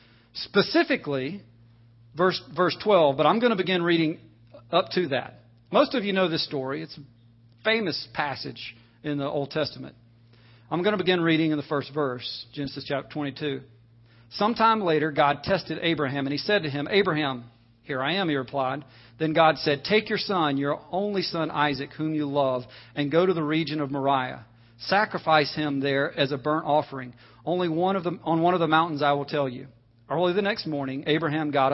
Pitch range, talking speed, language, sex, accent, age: 130-165 Hz, 190 wpm, English, male, American, 40-59